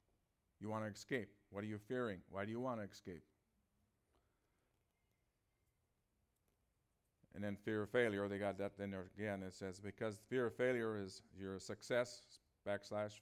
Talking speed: 160 wpm